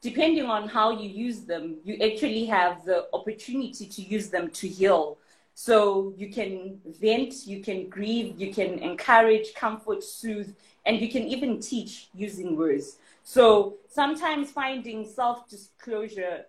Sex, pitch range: female, 190-230 Hz